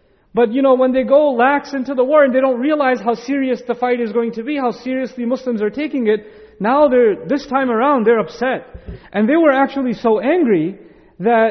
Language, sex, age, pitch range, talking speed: English, male, 40-59, 225-270 Hz, 220 wpm